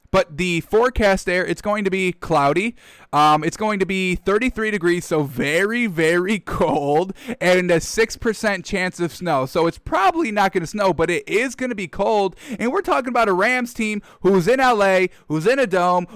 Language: English